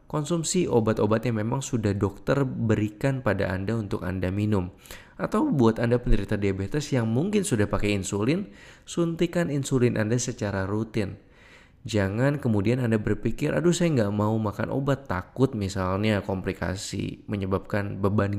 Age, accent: 20-39, native